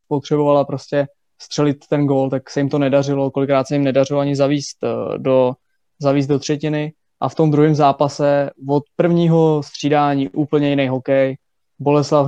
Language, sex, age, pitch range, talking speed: Czech, male, 20-39, 140-150 Hz, 155 wpm